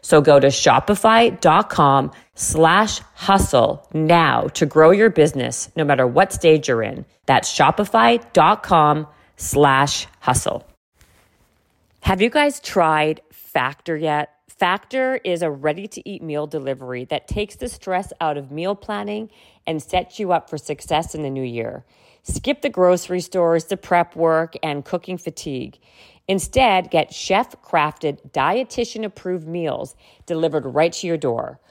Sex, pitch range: female, 155-205 Hz